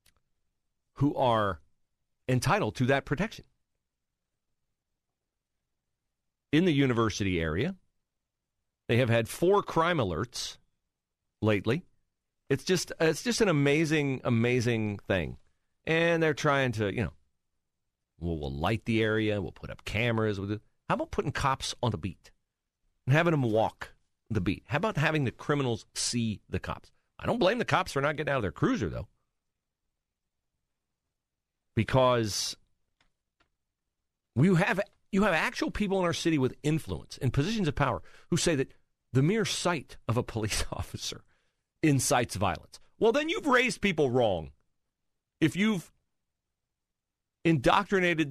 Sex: male